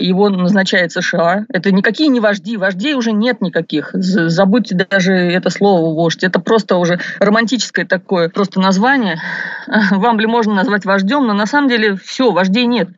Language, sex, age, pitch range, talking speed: Russian, female, 30-49, 195-250 Hz, 160 wpm